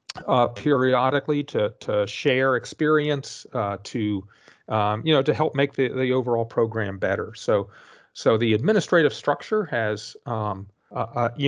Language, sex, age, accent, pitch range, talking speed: English, male, 40-59, American, 110-135 Hz, 150 wpm